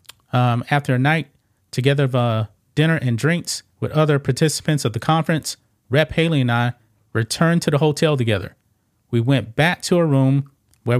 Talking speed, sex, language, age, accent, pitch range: 175 wpm, male, English, 40-59, American, 110-145 Hz